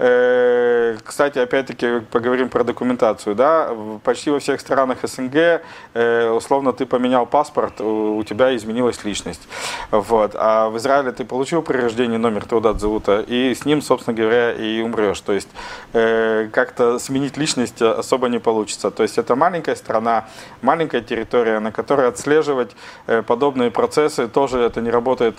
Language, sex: Russian, male